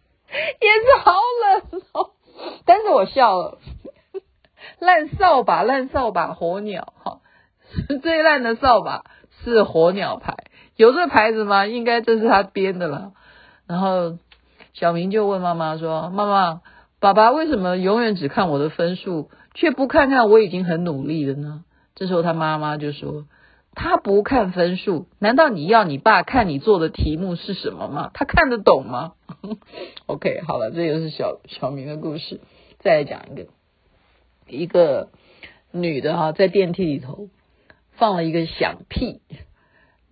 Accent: native